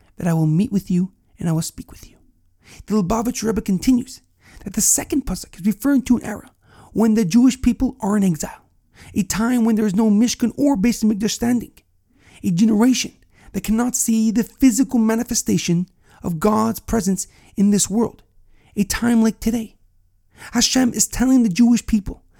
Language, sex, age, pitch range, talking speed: English, male, 40-59, 170-230 Hz, 180 wpm